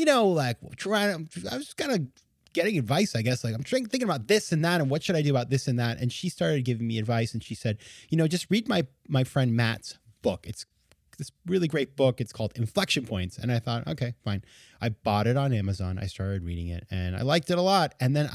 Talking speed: 250 wpm